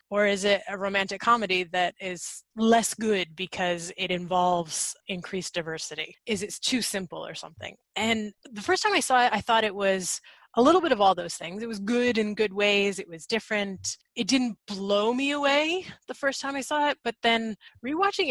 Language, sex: English, female